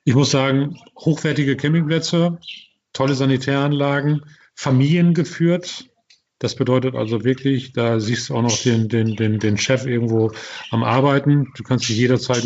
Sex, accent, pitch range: male, German, 115-135 Hz